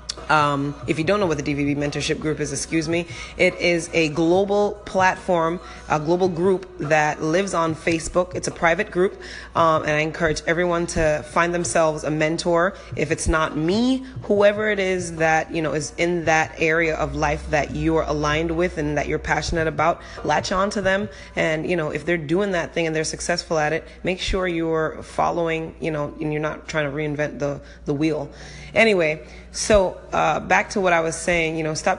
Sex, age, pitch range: female, 20-39, 155-180 Hz